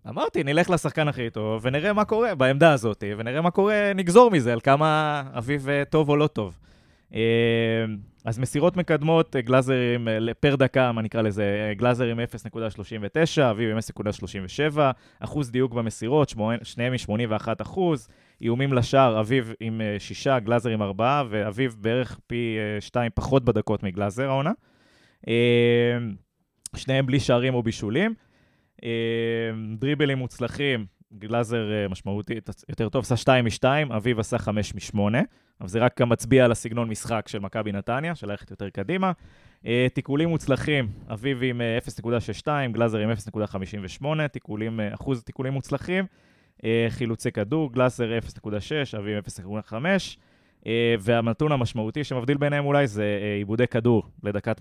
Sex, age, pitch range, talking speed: male, 20-39, 110-135 Hz, 130 wpm